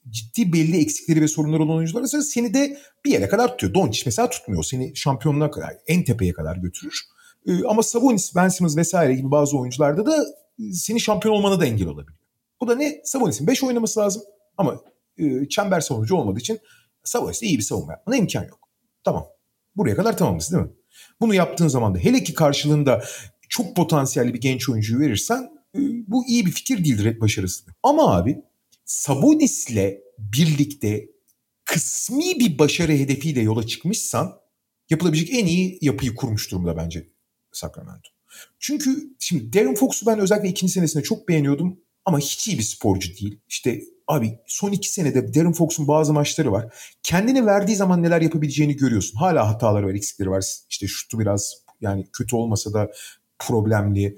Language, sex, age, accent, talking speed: Turkish, male, 40-59, native, 165 wpm